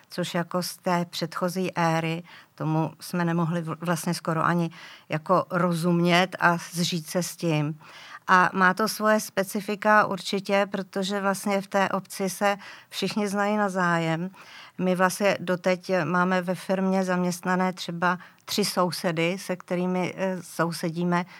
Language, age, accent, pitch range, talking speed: Czech, 50-69, native, 175-200 Hz, 135 wpm